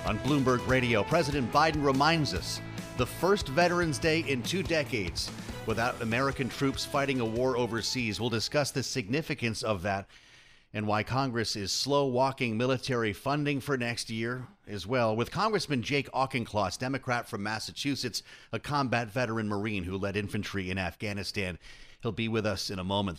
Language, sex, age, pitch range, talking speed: English, male, 40-59, 110-140 Hz, 165 wpm